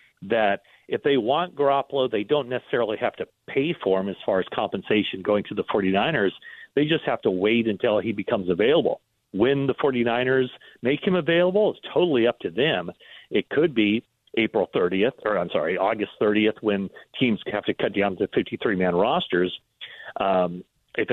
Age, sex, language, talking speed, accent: 40-59, male, English, 180 wpm, American